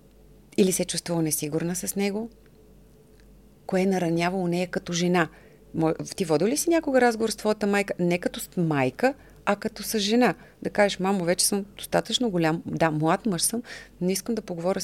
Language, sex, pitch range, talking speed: Bulgarian, female, 175-215 Hz, 180 wpm